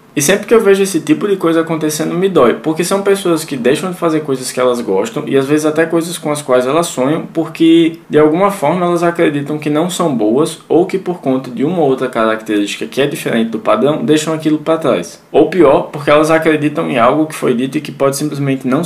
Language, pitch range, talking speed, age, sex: Portuguese, 140-170 Hz, 240 wpm, 20-39, male